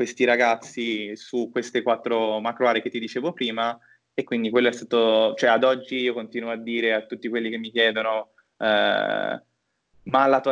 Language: Italian